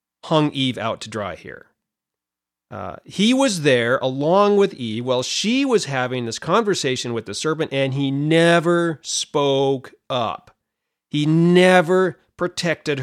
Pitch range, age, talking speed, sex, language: 130-195 Hz, 40-59, 140 wpm, male, English